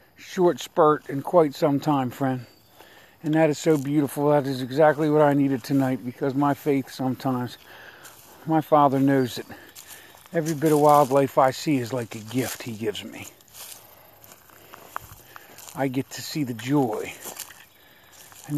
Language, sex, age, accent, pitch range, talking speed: English, male, 50-69, American, 130-155 Hz, 150 wpm